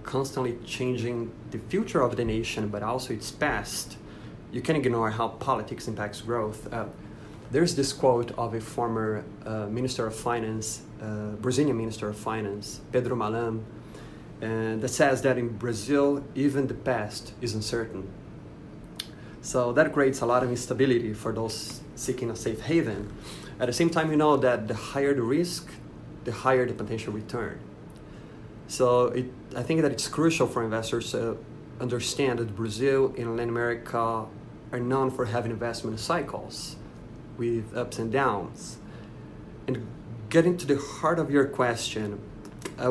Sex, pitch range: male, 110-135 Hz